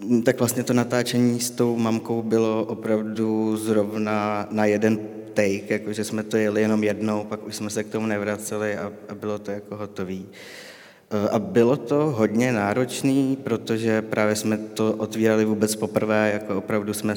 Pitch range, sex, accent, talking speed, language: 105-110 Hz, male, native, 165 wpm, Czech